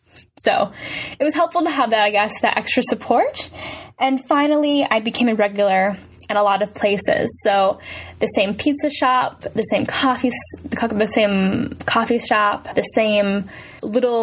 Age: 10-29